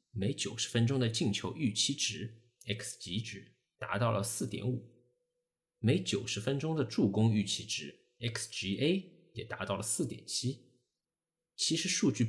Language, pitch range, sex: Chinese, 105-125 Hz, male